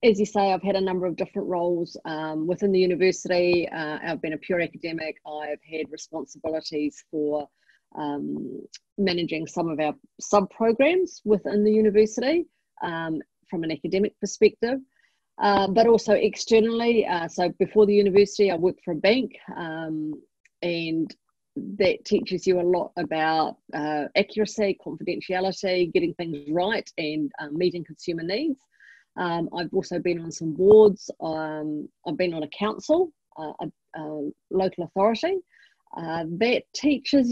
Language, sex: English, female